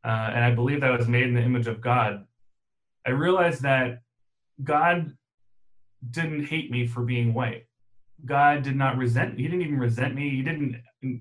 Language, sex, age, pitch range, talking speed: English, male, 30-49, 120-135 Hz, 195 wpm